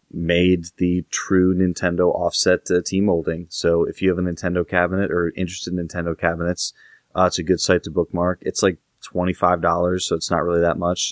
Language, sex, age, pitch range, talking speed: English, male, 20-39, 85-95 Hz, 205 wpm